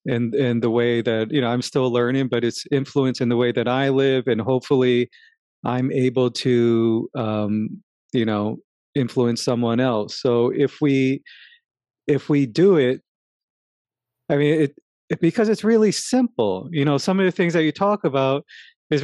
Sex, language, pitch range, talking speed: male, English, 125-165 Hz, 175 wpm